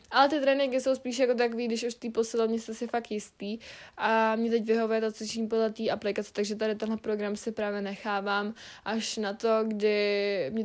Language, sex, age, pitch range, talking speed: Czech, female, 20-39, 215-240 Hz, 205 wpm